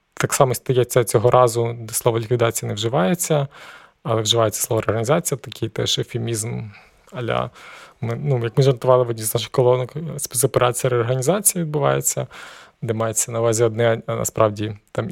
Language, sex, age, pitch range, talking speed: Ukrainian, male, 20-39, 115-135 Hz, 150 wpm